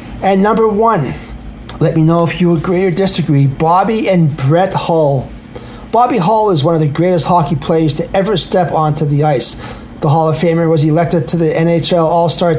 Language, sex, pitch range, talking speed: English, male, 150-180 Hz, 190 wpm